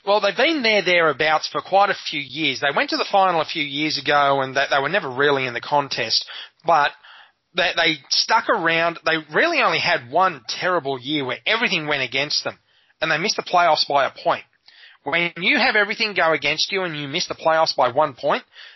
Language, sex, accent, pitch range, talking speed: English, male, Australian, 140-180 Hz, 220 wpm